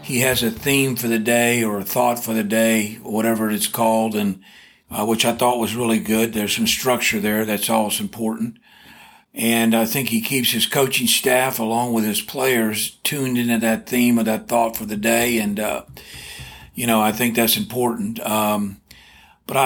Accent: American